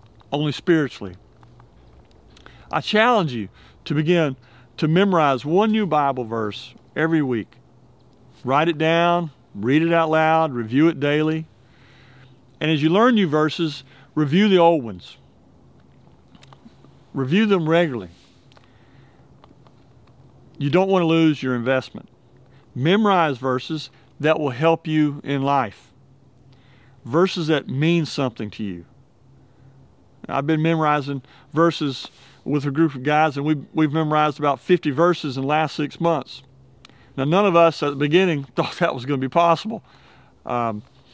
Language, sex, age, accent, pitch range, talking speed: English, male, 50-69, American, 125-160 Hz, 140 wpm